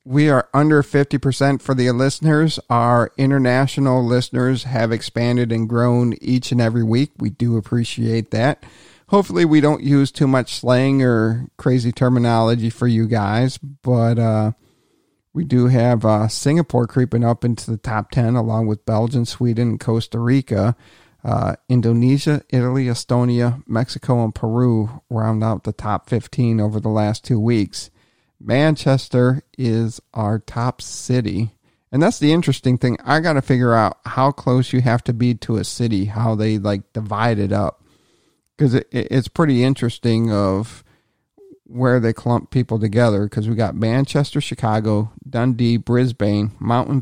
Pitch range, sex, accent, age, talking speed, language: 110-130 Hz, male, American, 40-59, 150 wpm, English